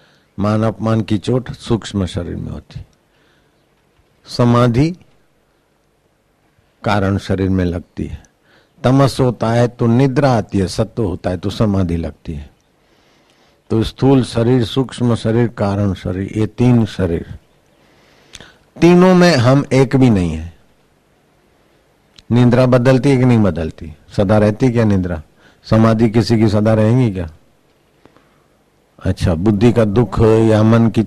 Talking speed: 105 wpm